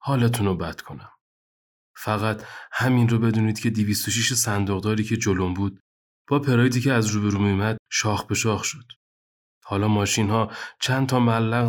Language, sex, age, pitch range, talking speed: Persian, male, 30-49, 100-125 Hz, 155 wpm